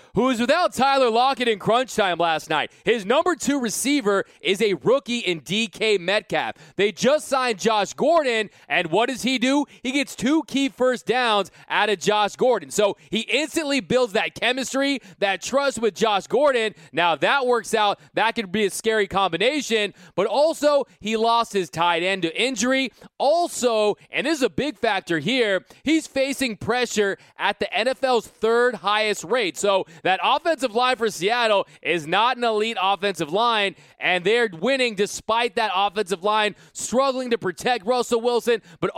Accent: American